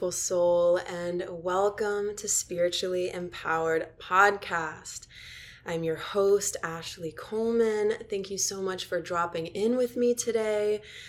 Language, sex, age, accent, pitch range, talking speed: English, female, 20-39, American, 170-205 Hz, 120 wpm